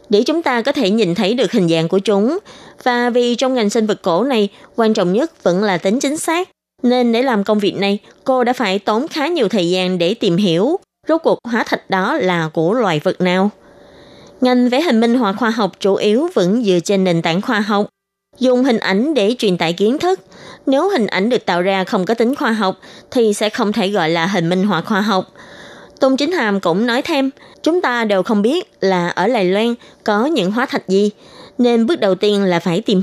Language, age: Vietnamese, 20-39